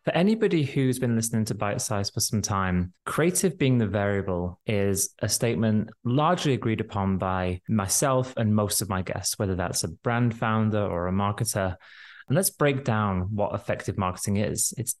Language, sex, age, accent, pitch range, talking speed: English, male, 20-39, British, 100-130 Hz, 180 wpm